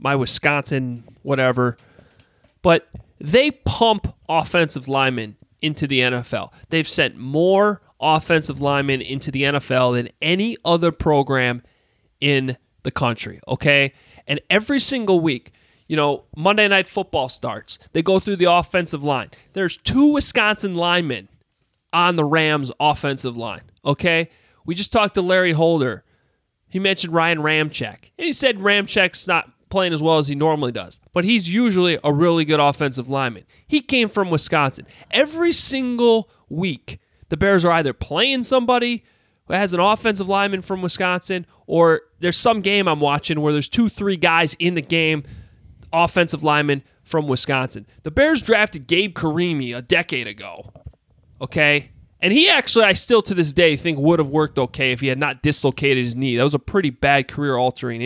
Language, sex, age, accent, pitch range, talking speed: English, male, 30-49, American, 135-185 Hz, 160 wpm